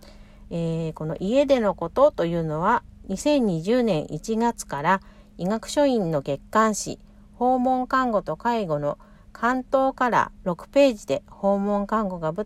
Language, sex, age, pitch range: Japanese, female, 50-69, 170-235 Hz